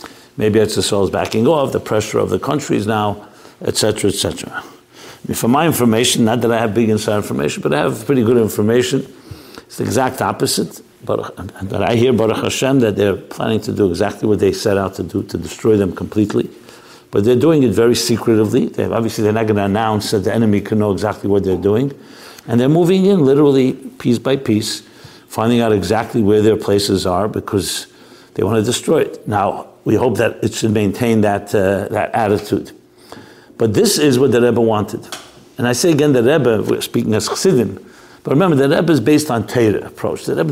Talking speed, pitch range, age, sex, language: 210 wpm, 105-130 Hz, 60-79, male, English